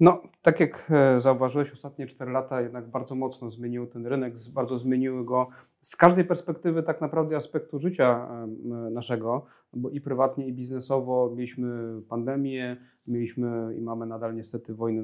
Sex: male